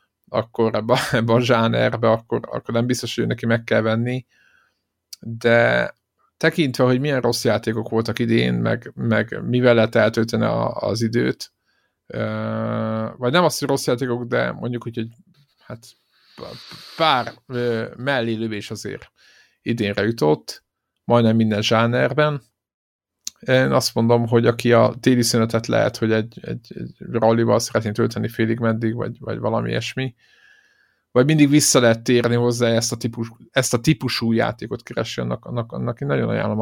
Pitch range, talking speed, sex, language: 110-120 Hz, 145 wpm, male, Hungarian